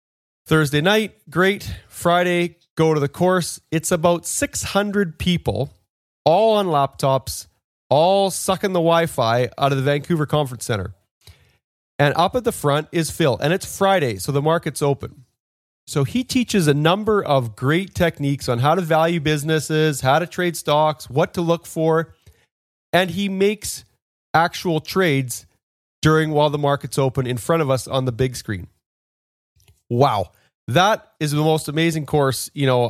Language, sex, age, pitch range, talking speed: English, male, 30-49, 125-165 Hz, 160 wpm